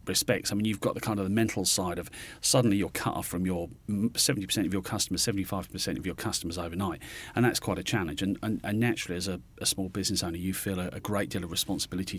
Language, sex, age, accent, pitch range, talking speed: English, male, 40-59, British, 95-110 Hz, 245 wpm